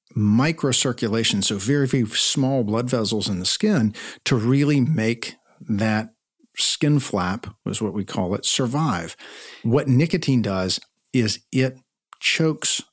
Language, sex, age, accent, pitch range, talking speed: English, male, 50-69, American, 105-130 Hz, 130 wpm